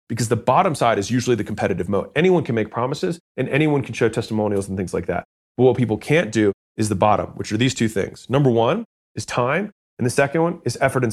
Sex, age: male, 30-49